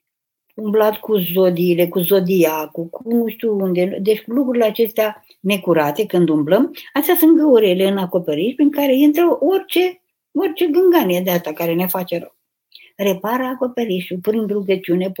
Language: Romanian